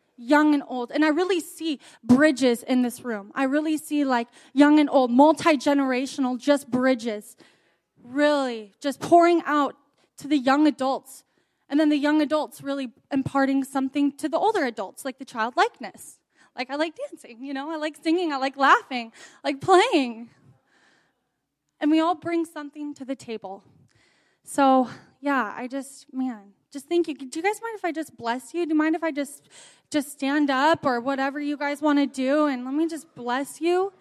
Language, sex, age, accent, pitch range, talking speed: English, female, 20-39, American, 265-320 Hz, 185 wpm